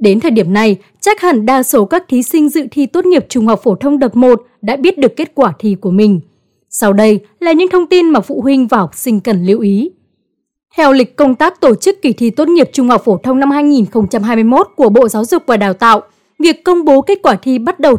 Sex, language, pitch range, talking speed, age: female, Vietnamese, 220-305 Hz, 250 wpm, 20-39